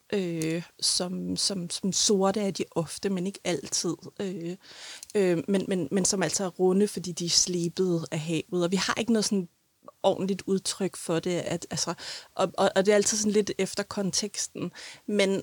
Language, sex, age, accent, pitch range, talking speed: Danish, female, 30-49, native, 175-200 Hz, 190 wpm